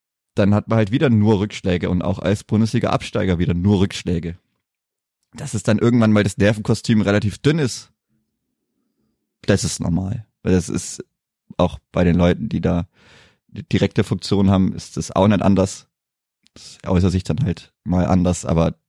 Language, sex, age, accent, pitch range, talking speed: German, male, 20-39, German, 90-110 Hz, 165 wpm